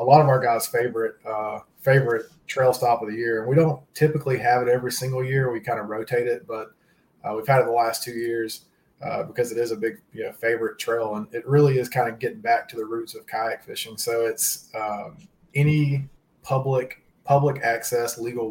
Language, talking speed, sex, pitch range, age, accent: English, 215 wpm, male, 110-130 Hz, 30-49, American